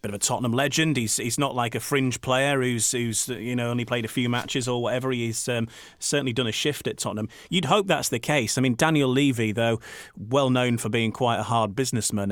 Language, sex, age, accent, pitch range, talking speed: English, male, 30-49, British, 110-130 Hz, 240 wpm